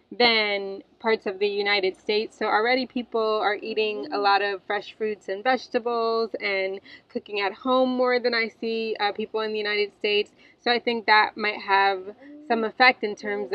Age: 20-39